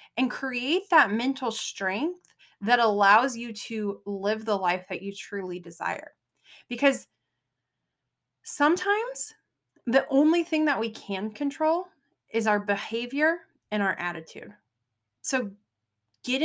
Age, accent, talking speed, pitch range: 20-39, American, 120 wpm, 205-295 Hz